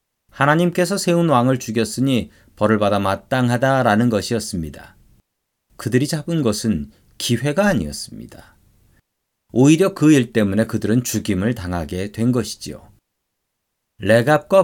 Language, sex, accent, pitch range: Korean, male, native, 110-150 Hz